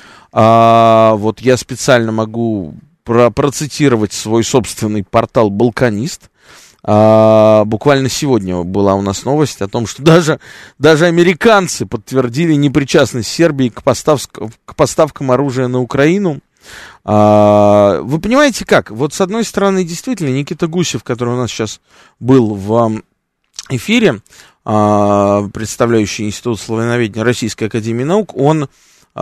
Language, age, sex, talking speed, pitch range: Russian, 20-39, male, 110 wpm, 105-145 Hz